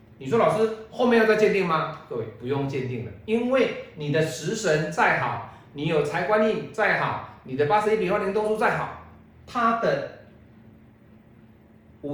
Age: 40-59